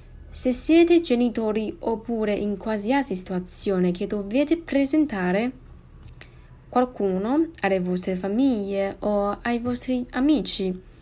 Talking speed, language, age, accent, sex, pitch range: 100 wpm, Italian, 20-39, native, female, 180-245 Hz